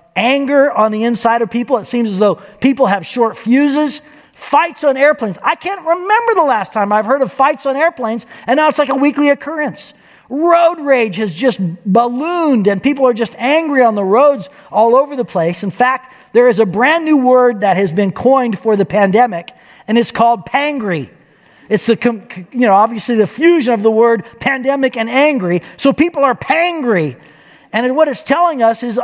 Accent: American